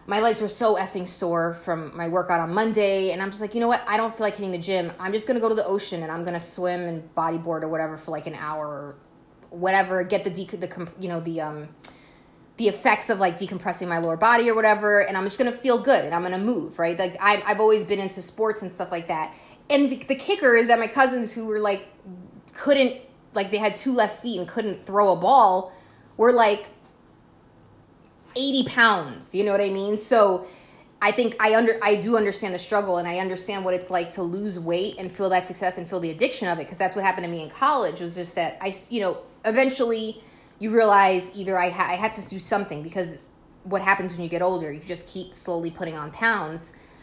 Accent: American